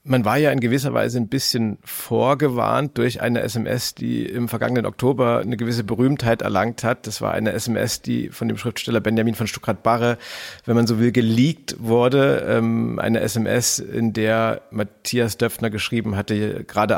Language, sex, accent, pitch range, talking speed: German, male, German, 110-130 Hz, 165 wpm